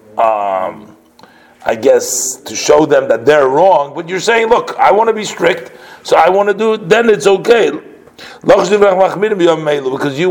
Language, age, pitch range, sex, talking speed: English, 50-69, 140-195 Hz, male, 170 wpm